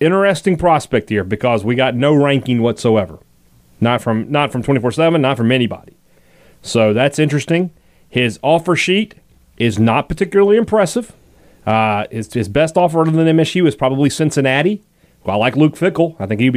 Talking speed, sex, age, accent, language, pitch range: 175 wpm, male, 30-49, American, English, 120-160 Hz